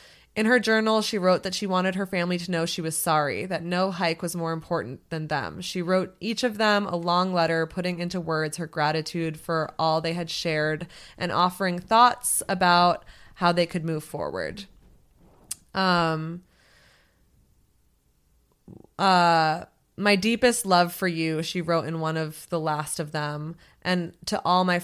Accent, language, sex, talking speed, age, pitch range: American, English, female, 170 wpm, 20-39, 155-180 Hz